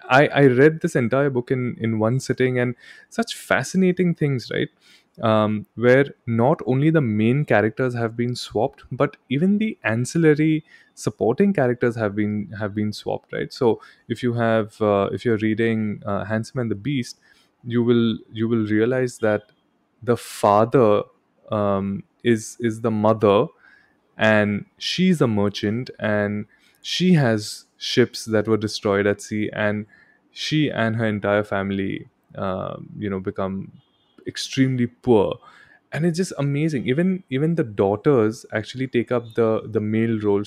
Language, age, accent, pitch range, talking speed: English, 20-39, Indian, 105-130 Hz, 155 wpm